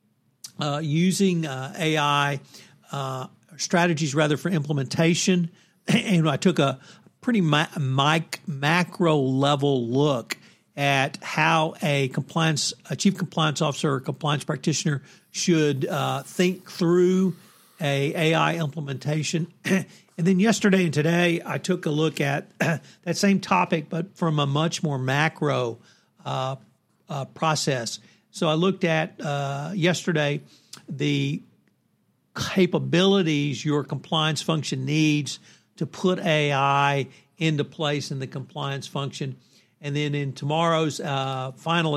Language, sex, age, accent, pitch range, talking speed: English, male, 50-69, American, 140-170 Hz, 120 wpm